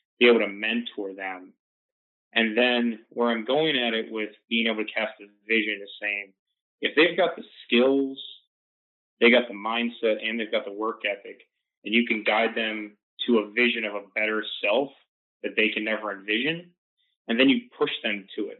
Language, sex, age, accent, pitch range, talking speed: English, male, 30-49, American, 110-135 Hz, 195 wpm